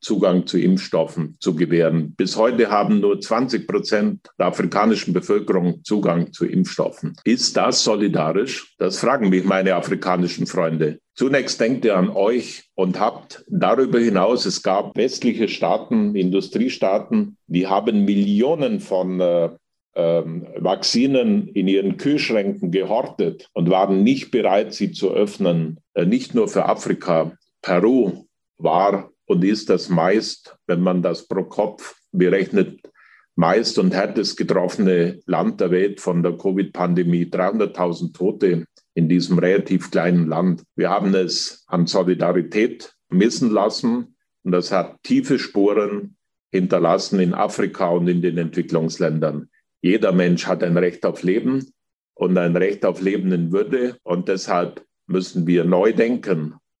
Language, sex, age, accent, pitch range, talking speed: German, male, 50-69, German, 85-100 Hz, 135 wpm